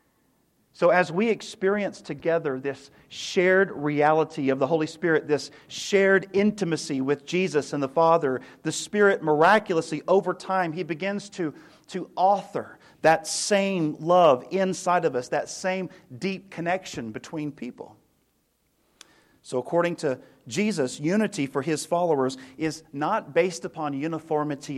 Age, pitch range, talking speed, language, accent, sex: 40-59, 150-195 Hz, 135 wpm, English, American, male